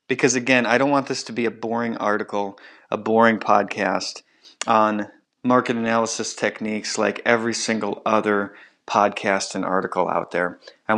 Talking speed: 155 wpm